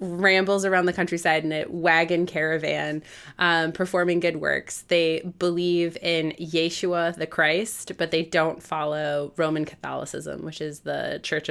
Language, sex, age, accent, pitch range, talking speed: English, female, 20-39, American, 165-185 Hz, 145 wpm